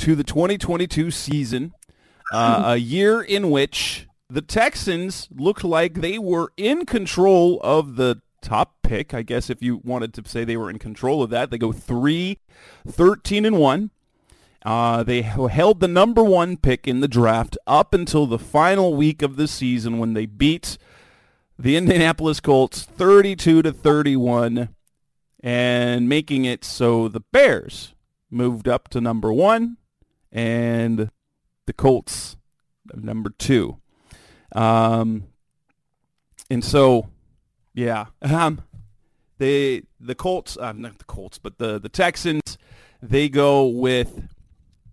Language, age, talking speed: English, 40-59, 130 wpm